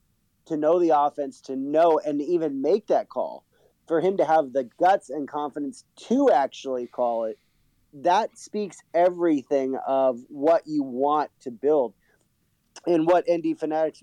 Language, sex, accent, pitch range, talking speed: English, male, American, 140-175 Hz, 160 wpm